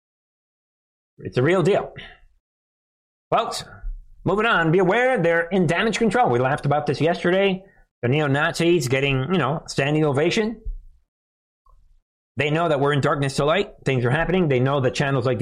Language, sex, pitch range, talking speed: English, male, 125-190 Hz, 160 wpm